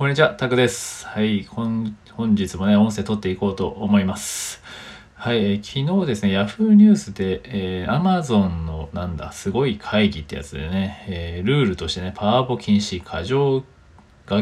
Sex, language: male, Japanese